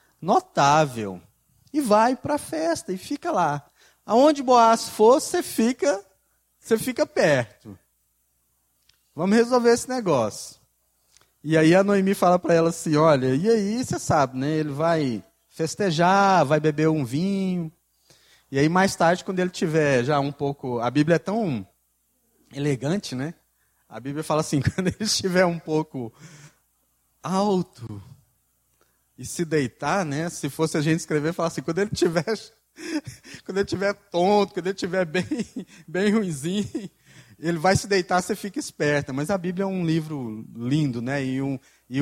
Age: 20-39